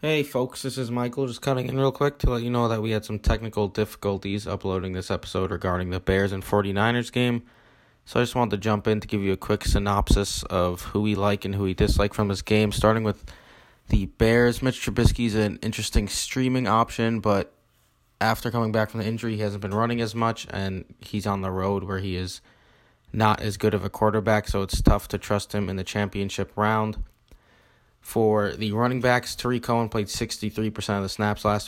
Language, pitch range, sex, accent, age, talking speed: English, 100-110 Hz, male, American, 20-39, 215 wpm